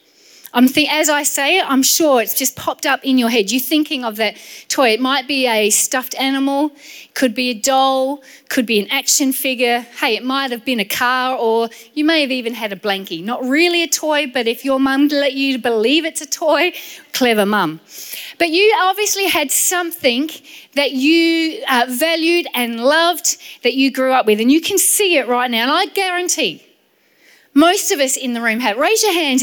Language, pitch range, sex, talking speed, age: English, 240-305 Hz, female, 210 wpm, 30-49